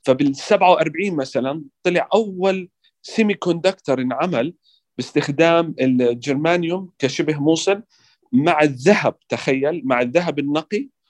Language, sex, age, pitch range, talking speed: Arabic, male, 40-59, 145-185 Hz, 95 wpm